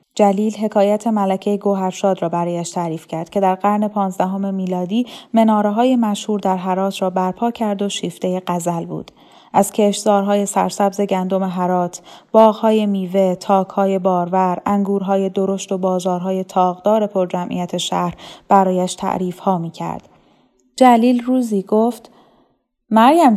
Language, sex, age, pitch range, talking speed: Persian, female, 10-29, 190-220 Hz, 130 wpm